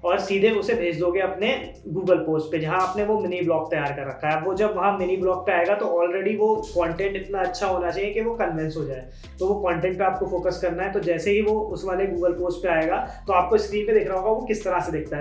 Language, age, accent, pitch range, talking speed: Hindi, 20-39, native, 165-200 Hz, 265 wpm